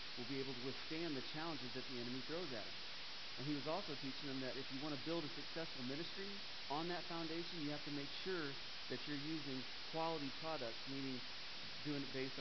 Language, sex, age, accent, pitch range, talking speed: English, male, 40-59, American, 120-145 Hz, 215 wpm